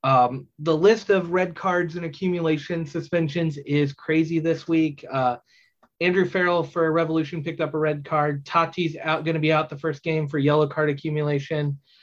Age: 30-49